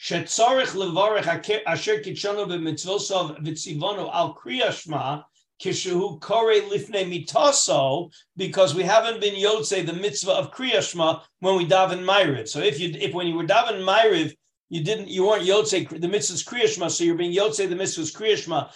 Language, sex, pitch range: English, male, 170-220 Hz